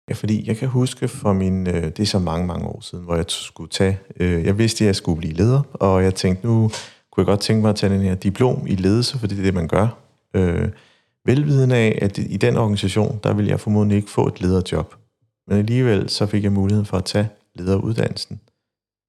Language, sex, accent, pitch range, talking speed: Danish, male, native, 95-110 Hz, 225 wpm